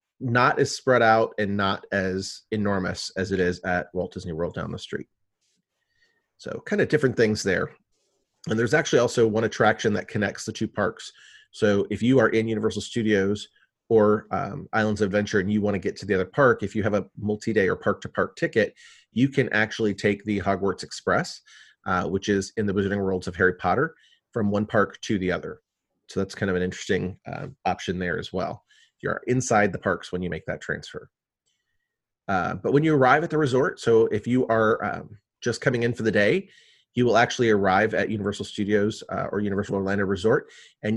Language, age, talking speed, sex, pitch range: English, 30-49, 205 wpm, male, 100-115 Hz